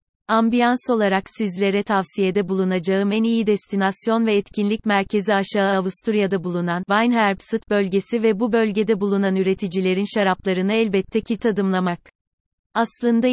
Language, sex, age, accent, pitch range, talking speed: Turkish, female, 30-49, native, 190-220 Hz, 115 wpm